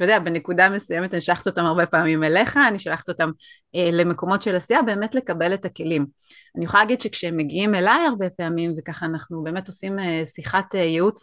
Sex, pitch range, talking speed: female, 165-195 Hz, 185 wpm